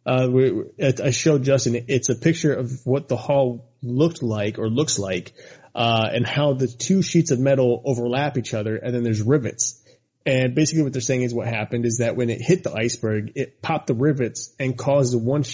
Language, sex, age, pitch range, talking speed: English, male, 30-49, 120-140 Hz, 210 wpm